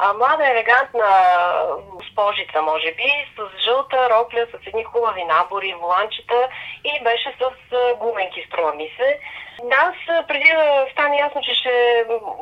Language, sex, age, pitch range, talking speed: Bulgarian, female, 30-49, 210-265 Hz, 130 wpm